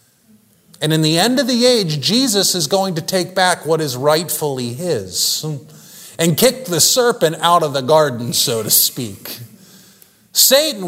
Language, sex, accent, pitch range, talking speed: English, male, American, 145-210 Hz, 160 wpm